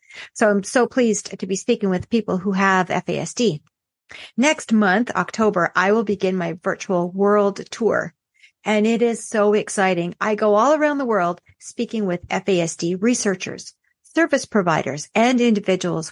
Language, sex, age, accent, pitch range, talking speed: English, female, 50-69, American, 185-235 Hz, 155 wpm